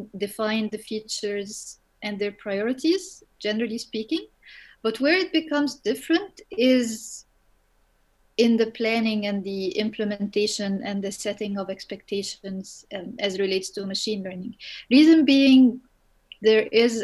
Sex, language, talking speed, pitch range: female, English, 125 wpm, 205-230 Hz